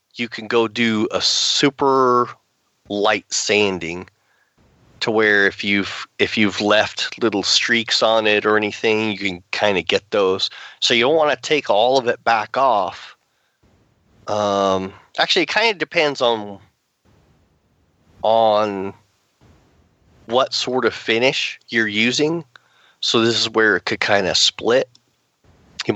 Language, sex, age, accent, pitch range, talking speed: English, male, 30-49, American, 100-125 Hz, 145 wpm